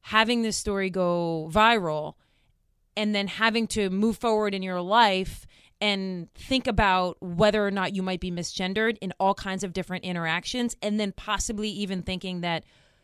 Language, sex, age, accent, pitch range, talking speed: English, female, 30-49, American, 190-235 Hz, 165 wpm